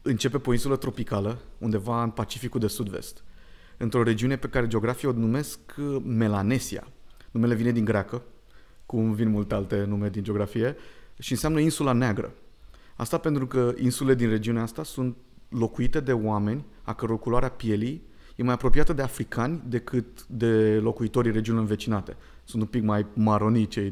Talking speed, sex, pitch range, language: 160 wpm, male, 105-125 Hz, Romanian